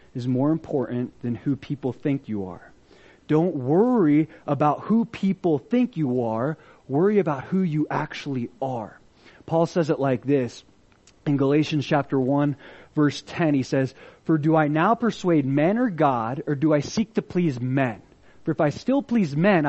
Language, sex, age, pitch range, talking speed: English, male, 30-49, 150-205 Hz, 175 wpm